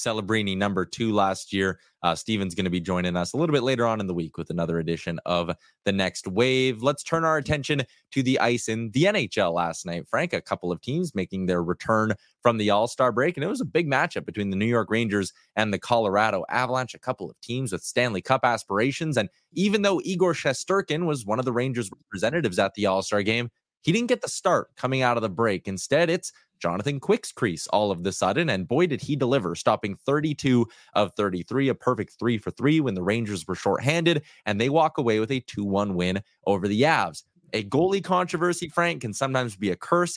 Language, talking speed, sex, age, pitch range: English, 220 wpm, male, 20-39, 100-140 Hz